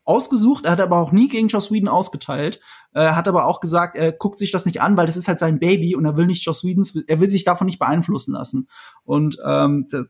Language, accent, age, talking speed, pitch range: German, German, 30-49, 260 wpm, 160-200 Hz